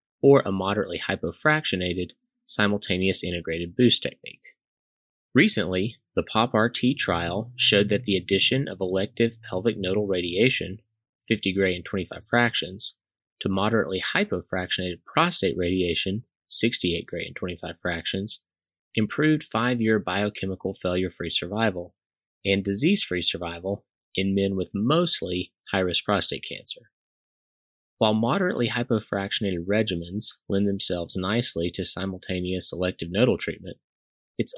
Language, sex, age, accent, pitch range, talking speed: English, male, 30-49, American, 90-110 Hz, 110 wpm